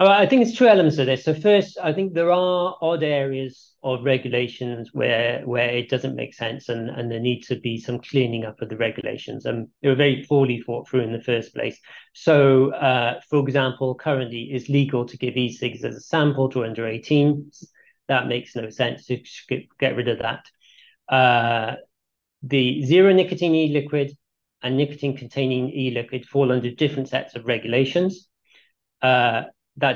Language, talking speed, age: English, 175 wpm, 40-59